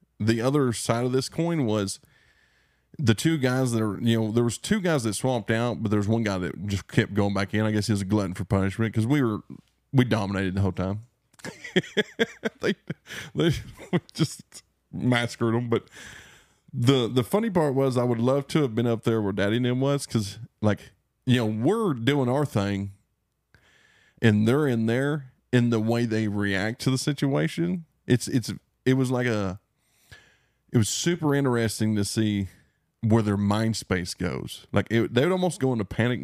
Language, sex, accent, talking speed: English, male, American, 190 wpm